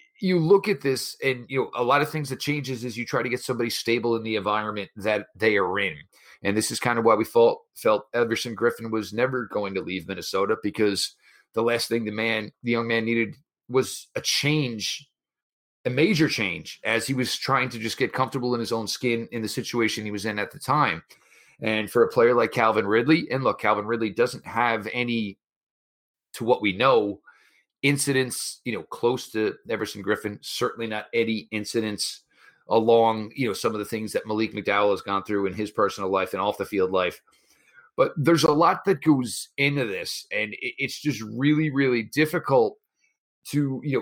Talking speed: 200 wpm